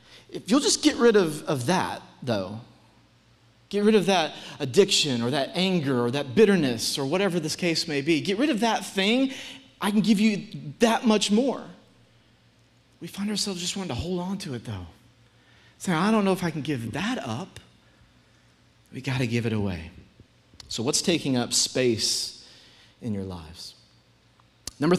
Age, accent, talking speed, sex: 30-49, American, 175 wpm, male